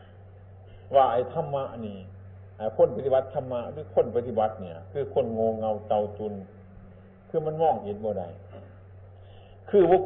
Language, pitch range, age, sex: Thai, 95-125 Hz, 60-79, male